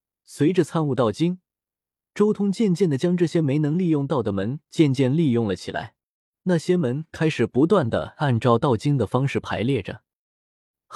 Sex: male